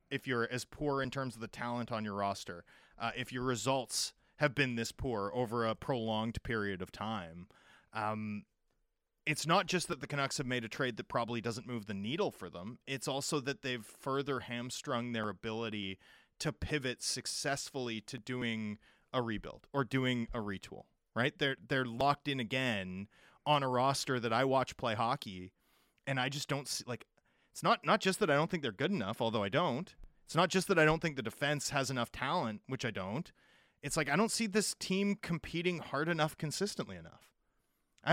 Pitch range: 120-170 Hz